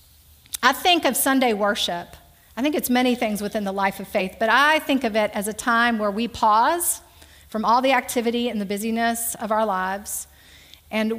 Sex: female